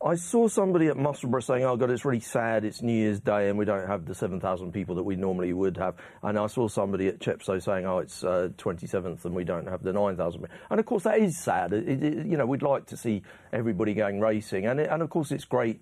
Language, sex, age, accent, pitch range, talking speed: English, male, 40-59, British, 95-130 Hz, 250 wpm